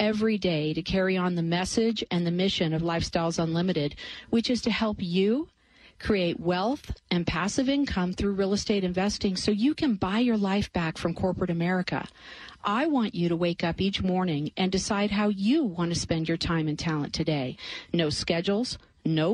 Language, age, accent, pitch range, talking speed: English, 40-59, American, 170-215 Hz, 185 wpm